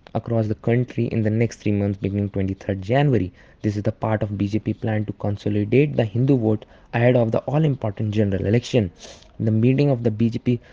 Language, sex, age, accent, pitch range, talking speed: English, male, 20-39, Indian, 100-120 Hz, 190 wpm